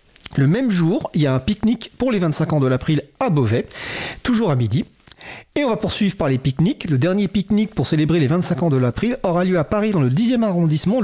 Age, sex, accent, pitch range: 40-59, male, French, 145-195 Hz